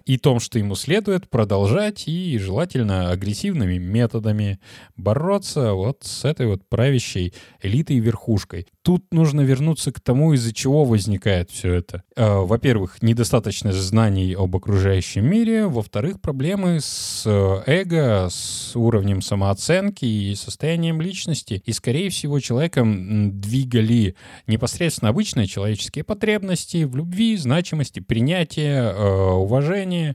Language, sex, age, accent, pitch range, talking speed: Russian, male, 20-39, native, 105-150 Hz, 115 wpm